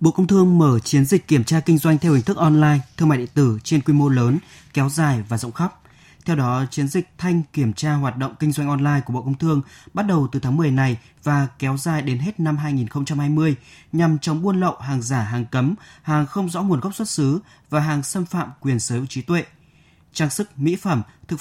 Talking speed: 240 wpm